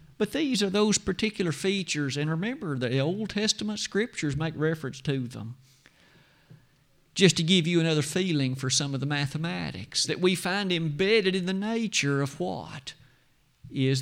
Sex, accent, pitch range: male, American, 135-190 Hz